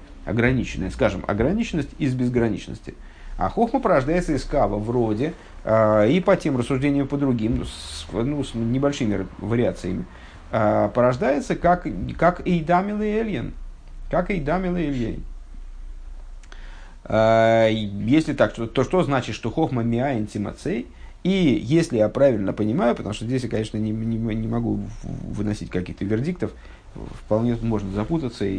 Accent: native